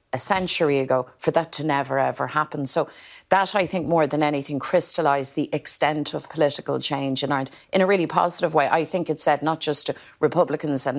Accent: Irish